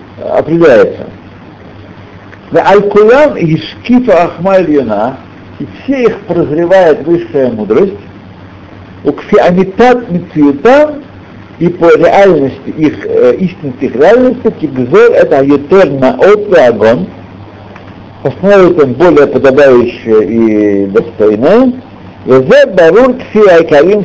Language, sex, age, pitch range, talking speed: Russian, male, 60-79, 100-165 Hz, 90 wpm